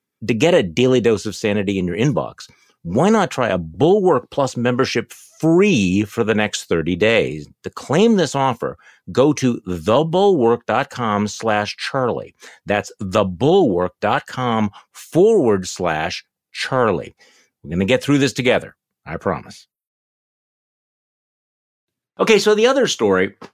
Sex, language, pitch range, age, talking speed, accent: male, English, 95-130 Hz, 50-69, 120 wpm, American